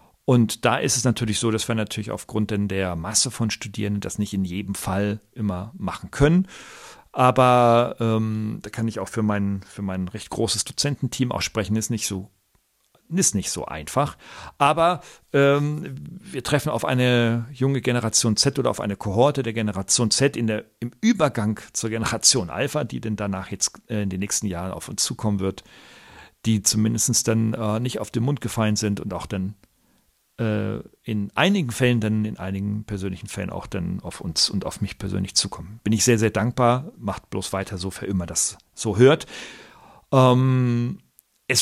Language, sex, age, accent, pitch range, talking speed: German, male, 40-59, German, 100-130 Hz, 185 wpm